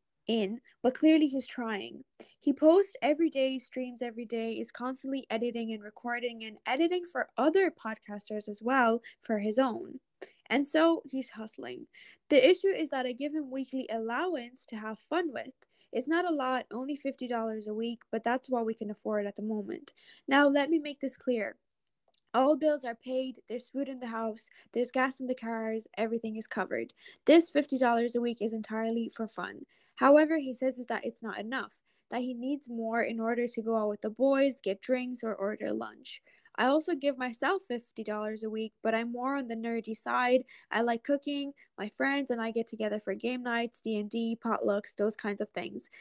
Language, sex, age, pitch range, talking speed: English, female, 10-29, 220-270 Hz, 195 wpm